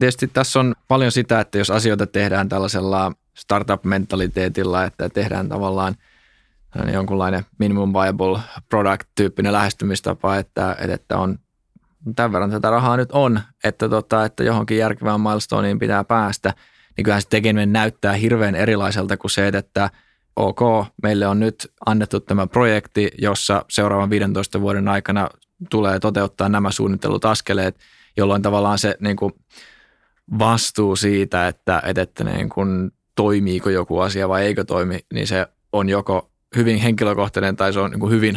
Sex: male